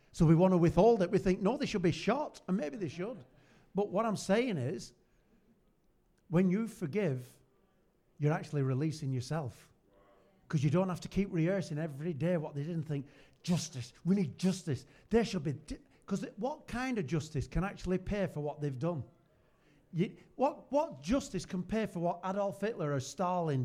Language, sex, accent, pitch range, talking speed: English, male, British, 155-210 Hz, 185 wpm